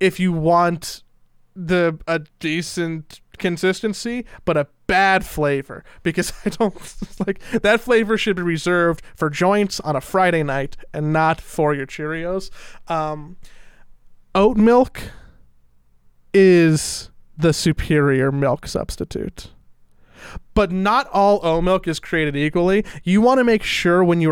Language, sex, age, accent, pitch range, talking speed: English, male, 20-39, American, 145-185 Hz, 135 wpm